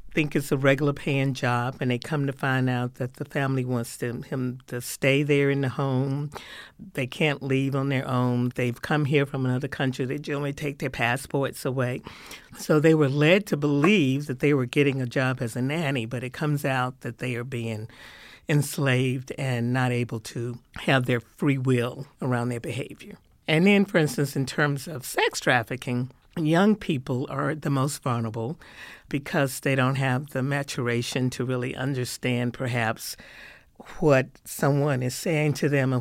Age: 50-69